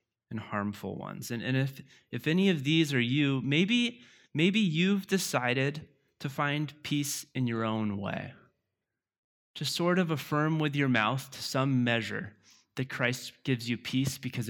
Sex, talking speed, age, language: male, 160 wpm, 20-39, English